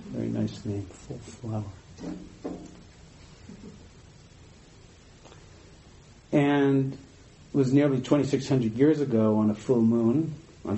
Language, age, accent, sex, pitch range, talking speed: English, 50-69, American, male, 105-130 Hz, 95 wpm